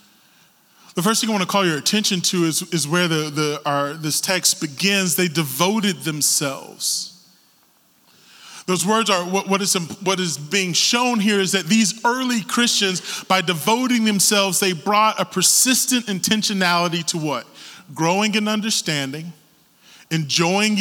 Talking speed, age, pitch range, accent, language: 150 wpm, 30-49, 175-225 Hz, American, English